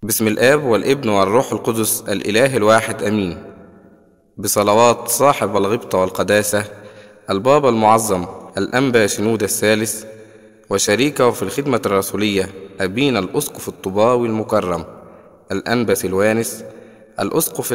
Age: 20-39